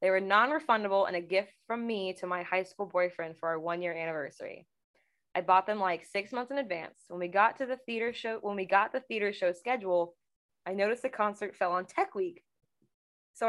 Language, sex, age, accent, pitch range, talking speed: English, female, 20-39, American, 180-235 Hz, 215 wpm